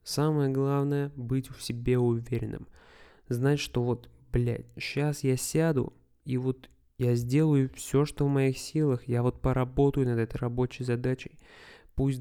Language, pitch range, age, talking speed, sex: Russian, 120-140 Hz, 20-39, 150 wpm, male